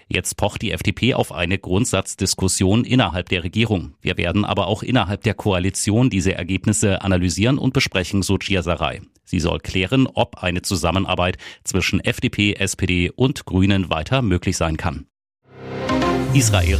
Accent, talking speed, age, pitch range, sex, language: German, 145 wpm, 30-49, 90-105 Hz, male, German